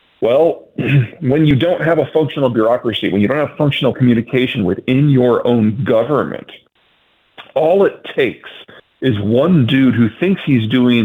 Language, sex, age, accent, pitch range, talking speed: English, male, 40-59, American, 105-130 Hz, 150 wpm